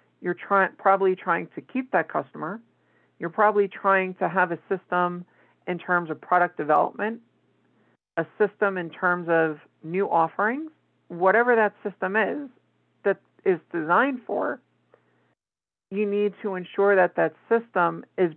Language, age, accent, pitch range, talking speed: English, 50-69, American, 170-205 Hz, 135 wpm